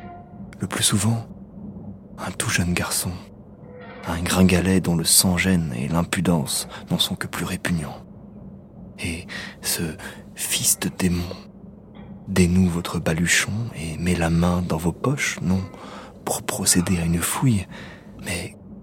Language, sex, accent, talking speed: French, male, French, 135 wpm